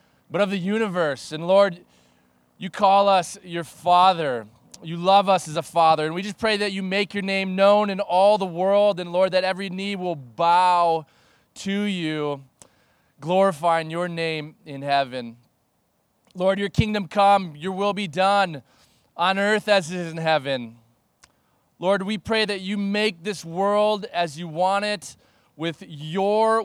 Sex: male